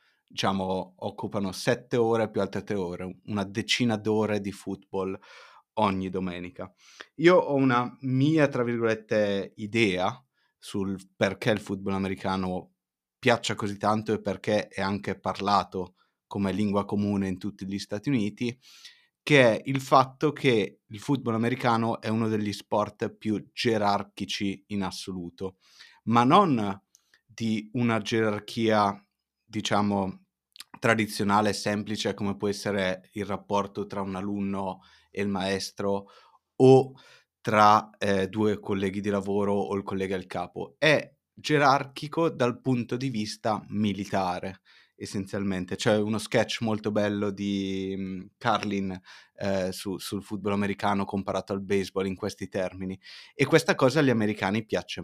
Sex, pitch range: male, 95-110 Hz